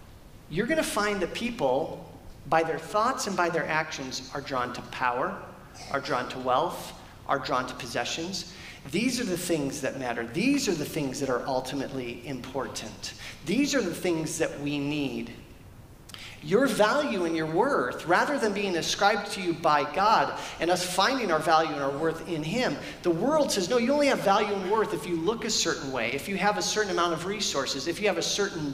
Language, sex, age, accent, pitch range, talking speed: English, male, 40-59, American, 135-205 Hz, 205 wpm